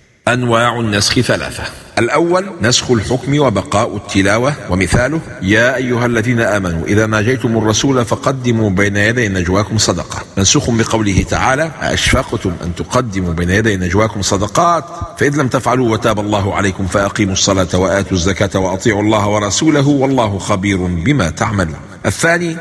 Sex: male